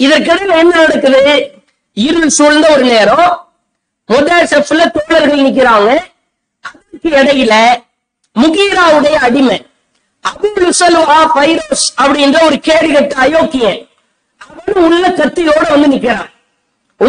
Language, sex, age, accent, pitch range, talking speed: English, female, 50-69, Indian, 275-330 Hz, 35 wpm